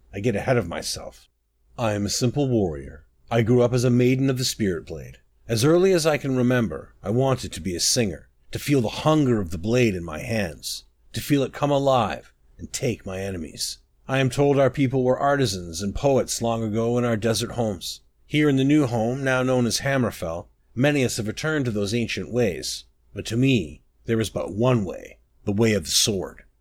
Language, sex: English, male